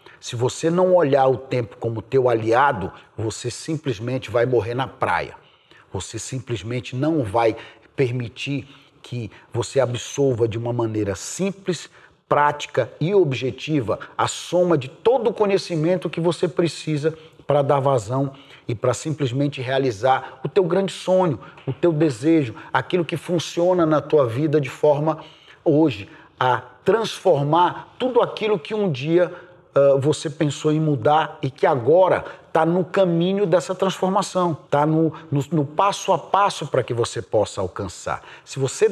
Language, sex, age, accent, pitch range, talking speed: Portuguese, male, 40-59, Brazilian, 125-165 Hz, 150 wpm